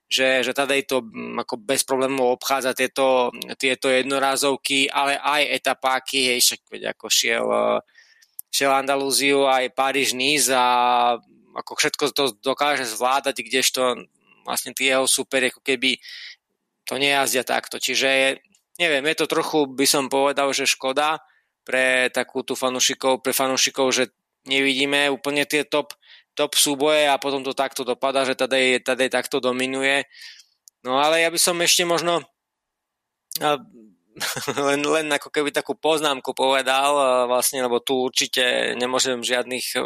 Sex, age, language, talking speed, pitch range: male, 20-39, Slovak, 135 wpm, 130-150 Hz